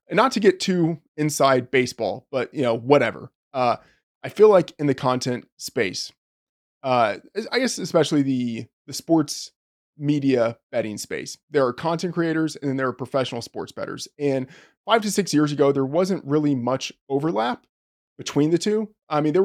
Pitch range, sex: 125-155 Hz, male